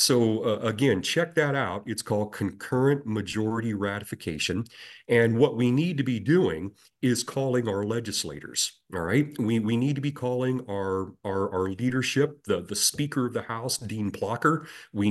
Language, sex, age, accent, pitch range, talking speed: English, male, 40-59, American, 100-125 Hz, 170 wpm